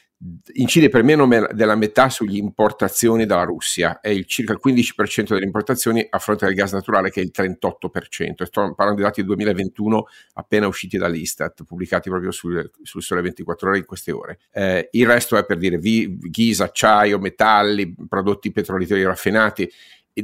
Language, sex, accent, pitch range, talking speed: Italian, male, native, 95-115 Hz, 165 wpm